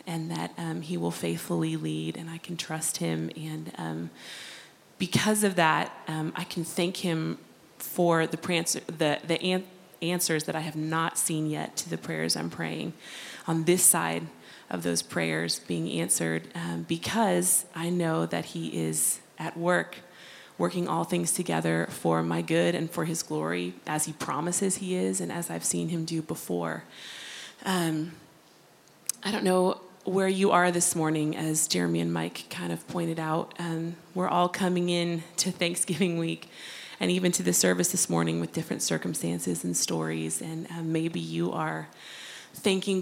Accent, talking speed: American, 170 wpm